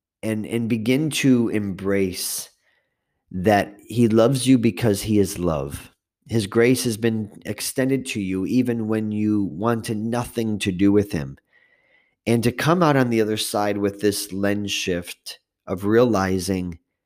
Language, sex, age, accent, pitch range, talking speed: English, male, 40-59, American, 100-120 Hz, 150 wpm